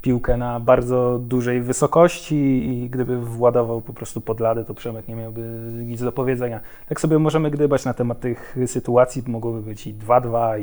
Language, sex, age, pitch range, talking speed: Polish, male, 20-39, 115-135 Hz, 175 wpm